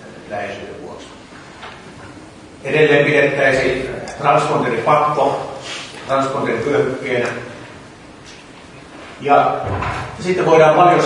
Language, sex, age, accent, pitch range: English, male, 30-49, Finnish, 115-145 Hz